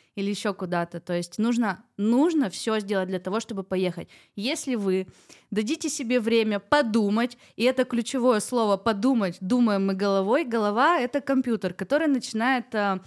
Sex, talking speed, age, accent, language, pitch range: female, 165 wpm, 20-39, native, Russian, 195-250 Hz